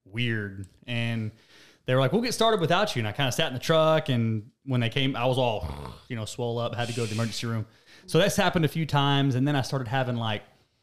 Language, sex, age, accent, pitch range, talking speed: English, male, 30-49, American, 110-140 Hz, 265 wpm